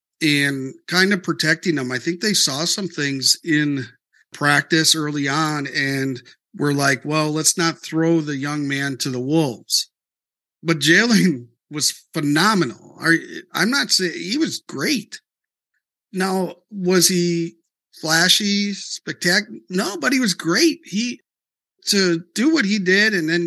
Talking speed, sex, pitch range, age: 145 wpm, male, 150-180 Hz, 50-69